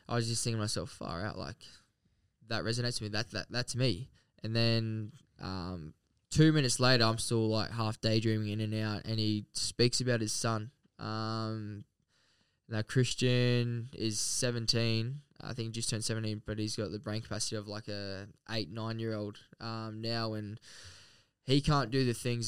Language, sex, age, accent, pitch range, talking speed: English, male, 10-29, Australian, 110-120 Hz, 180 wpm